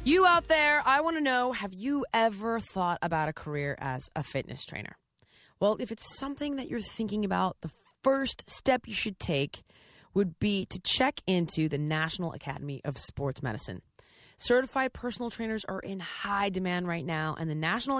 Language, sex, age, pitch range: English, female, 20-39, 165-245 Hz